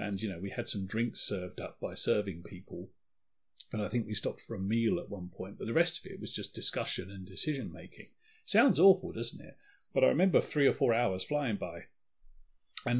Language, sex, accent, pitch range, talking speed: English, male, British, 110-140 Hz, 220 wpm